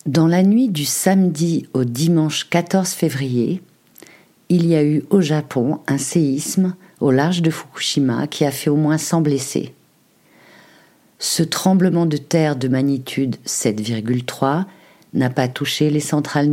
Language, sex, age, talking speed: French, female, 50-69, 145 wpm